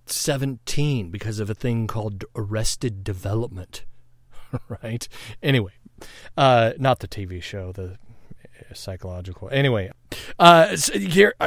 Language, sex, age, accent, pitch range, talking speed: English, male, 40-59, American, 105-130 Hz, 110 wpm